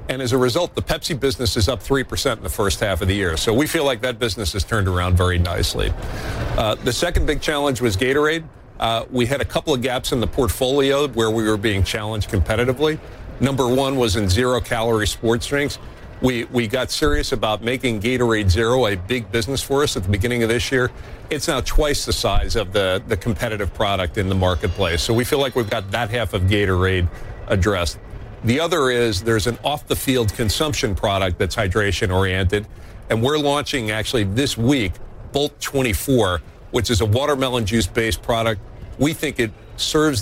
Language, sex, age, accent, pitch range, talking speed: English, male, 50-69, American, 100-130 Hz, 200 wpm